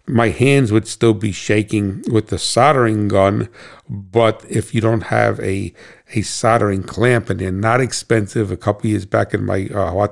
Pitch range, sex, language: 100-115 Hz, male, English